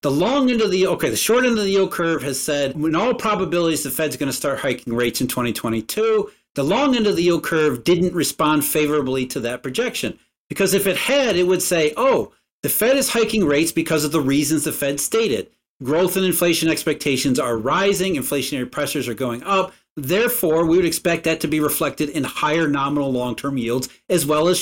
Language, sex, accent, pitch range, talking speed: English, male, American, 140-195 Hz, 210 wpm